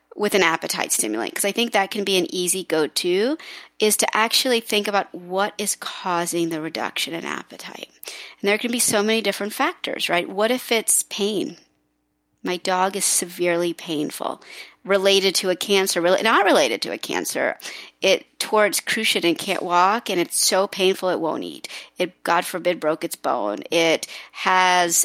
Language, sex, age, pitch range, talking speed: English, female, 40-59, 175-220 Hz, 175 wpm